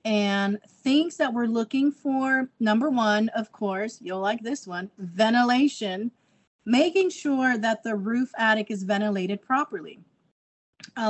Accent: American